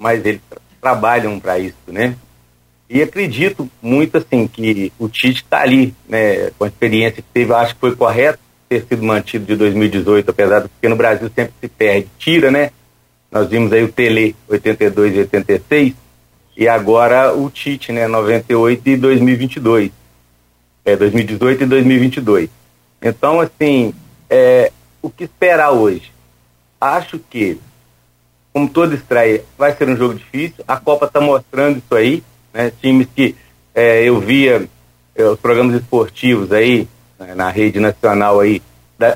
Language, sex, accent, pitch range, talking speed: Portuguese, male, Brazilian, 105-130 Hz, 155 wpm